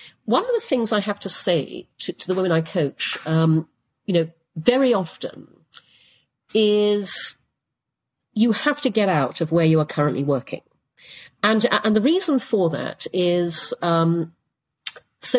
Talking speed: 155 wpm